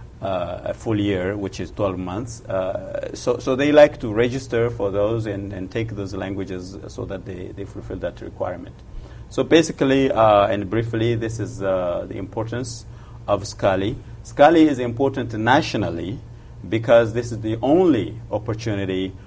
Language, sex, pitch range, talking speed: English, male, 100-115 Hz, 160 wpm